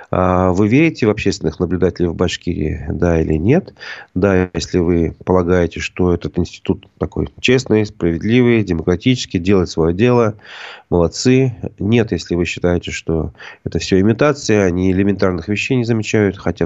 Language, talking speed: Russian, 140 wpm